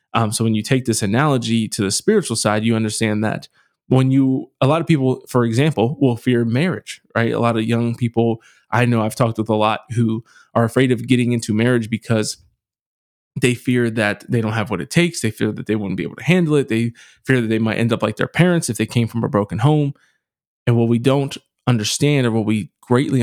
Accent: American